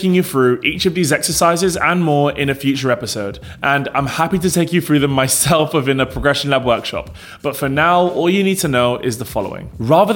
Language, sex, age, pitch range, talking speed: English, male, 20-39, 130-165 Hz, 225 wpm